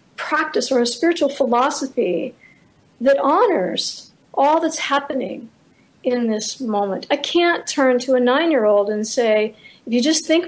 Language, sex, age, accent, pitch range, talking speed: English, female, 50-69, American, 225-280 Hz, 145 wpm